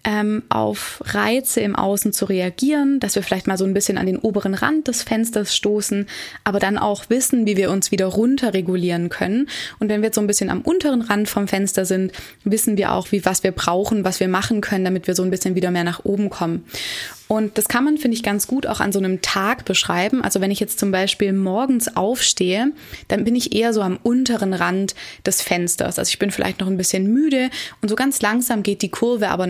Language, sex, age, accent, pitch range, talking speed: German, female, 20-39, German, 185-225 Hz, 230 wpm